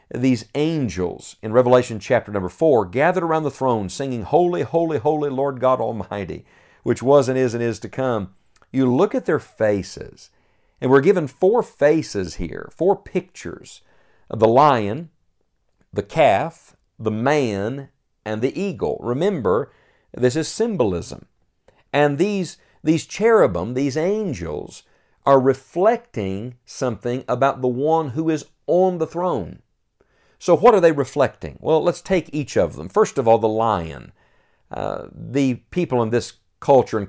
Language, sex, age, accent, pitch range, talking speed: English, male, 50-69, American, 110-150 Hz, 150 wpm